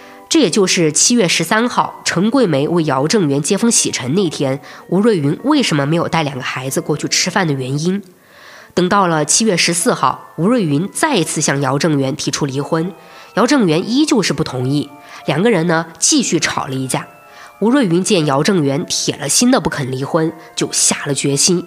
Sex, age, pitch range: female, 20-39, 145-200 Hz